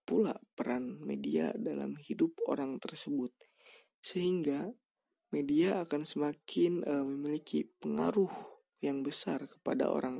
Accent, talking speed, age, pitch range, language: native, 105 wpm, 20-39, 135-195 Hz, Indonesian